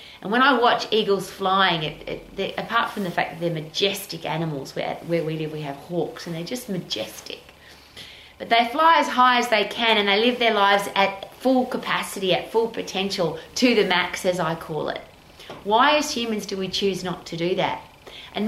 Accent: Australian